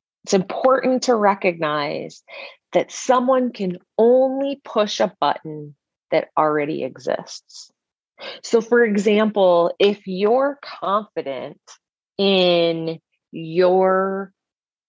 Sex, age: female, 30-49